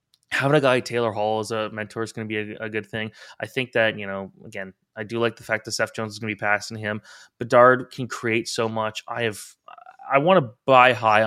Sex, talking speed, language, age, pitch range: male, 260 wpm, English, 20-39, 105-130 Hz